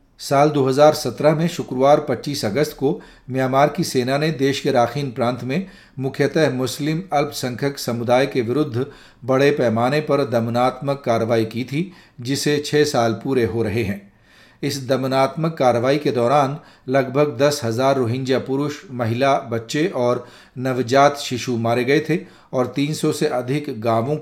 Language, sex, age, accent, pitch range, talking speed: Hindi, male, 40-59, native, 120-145 Hz, 145 wpm